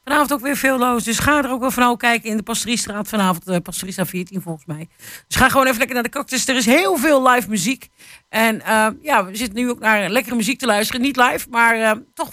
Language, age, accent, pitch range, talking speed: Dutch, 50-69, Dutch, 215-285 Hz, 250 wpm